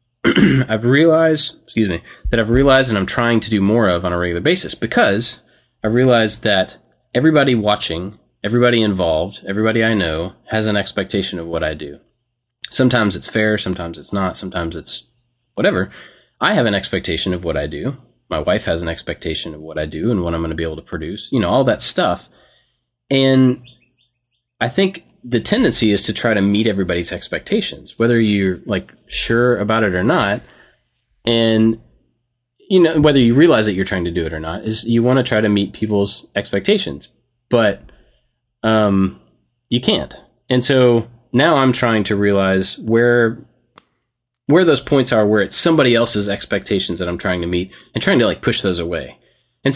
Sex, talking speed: male, 185 wpm